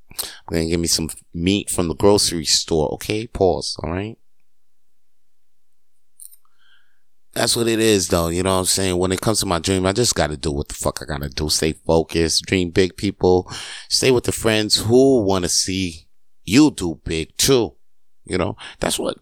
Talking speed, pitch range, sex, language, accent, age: 195 wpm, 80-95 Hz, male, English, American, 30-49